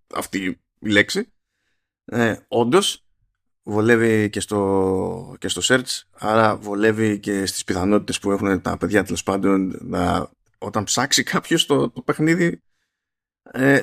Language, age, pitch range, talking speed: Greek, 20-39, 100-125 Hz, 130 wpm